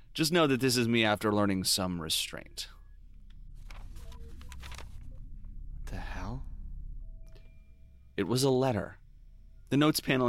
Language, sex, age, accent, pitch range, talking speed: English, male, 30-49, American, 85-110 Hz, 115 wpm